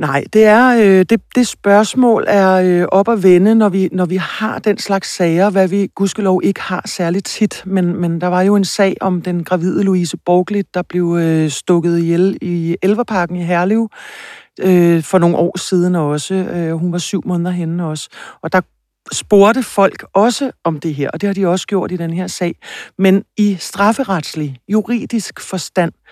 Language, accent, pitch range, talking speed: Danish, native, 175-200 Hz, 195 wpm